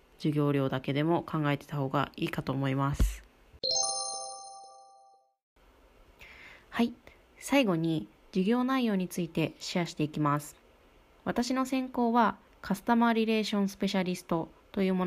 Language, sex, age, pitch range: Japanese, female, 20-39, 145-195 Hz